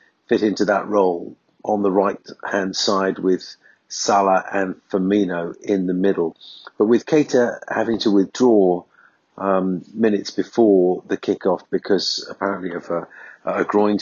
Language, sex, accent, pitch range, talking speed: English, male, British, 95-135 Hz, 135 wpm